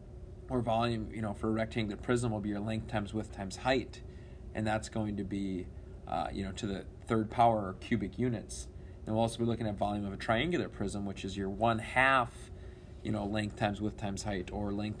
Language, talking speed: English, 225 wpm